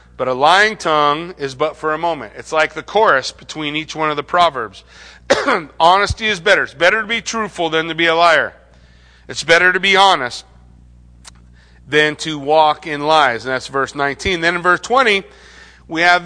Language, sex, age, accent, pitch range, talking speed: English, male, 40-59, American, 135-190 Hz, 190 wpm